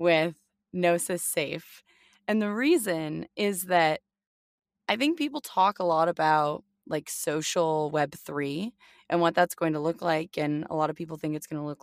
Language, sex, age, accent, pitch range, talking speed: English, female, 20-39, American, 155-195 Hz, 185 wpm